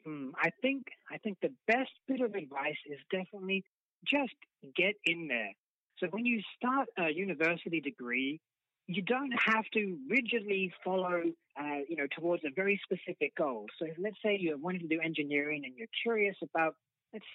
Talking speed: 175 wpm